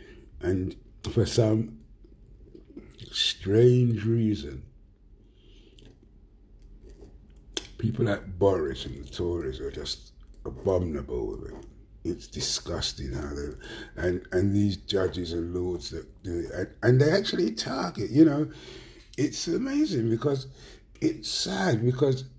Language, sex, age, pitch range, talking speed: English, male, 60-79, 95-130 Hz, 110 wpm